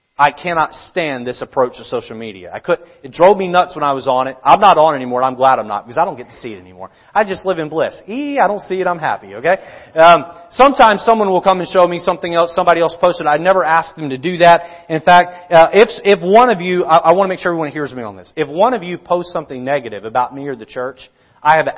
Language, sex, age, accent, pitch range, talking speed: English, male, 30-49, American, 150-190 Hz, 285 wpm